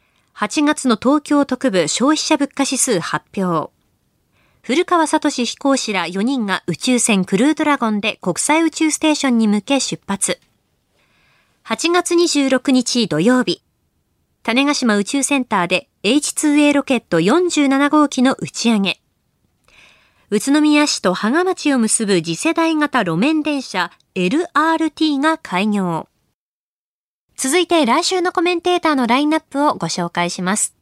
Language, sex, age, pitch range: Japanese, female, 20-39, 205-290 Hz